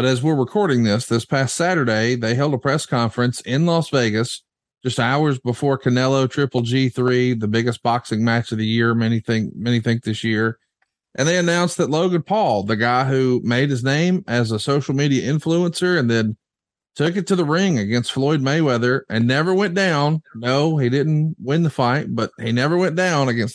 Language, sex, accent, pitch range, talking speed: English, male, American, 125-165 Hz, 200 wpm